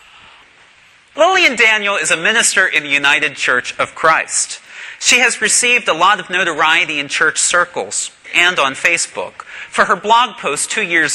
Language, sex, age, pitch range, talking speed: English, male, 40-59, 160-240 Hz, 160 wpm